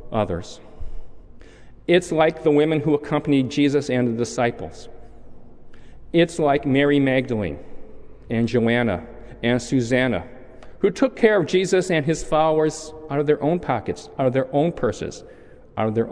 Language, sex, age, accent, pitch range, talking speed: English, male, 40-59, American, 115-160 Hz, 150 wpm